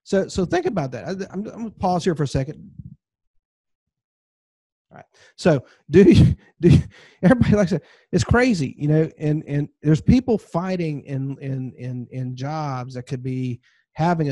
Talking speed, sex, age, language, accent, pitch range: 180 wpm, male, 40-59, English, American, 135-170 Hz